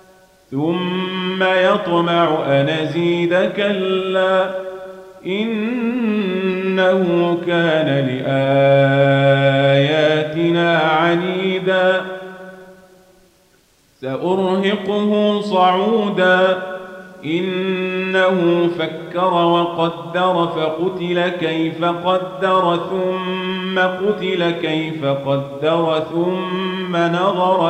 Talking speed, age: 50 wpm, 40-59